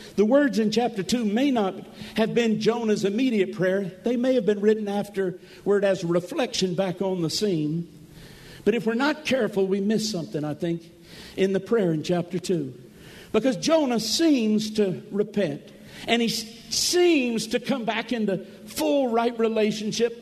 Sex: male